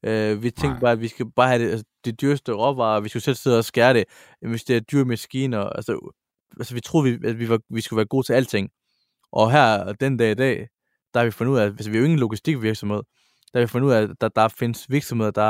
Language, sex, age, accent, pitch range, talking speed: English, male, 20-39, Danish, 105-130 Hz, 260 wpm